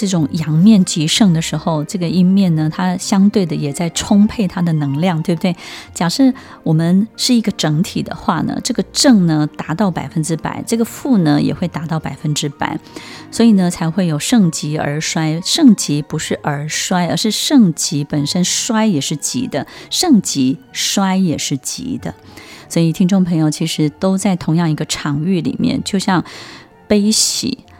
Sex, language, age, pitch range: female, Chinese, 20-39, 155-210 Hz